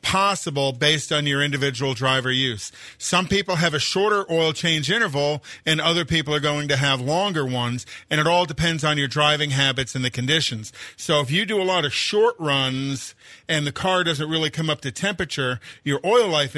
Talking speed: 205 wpm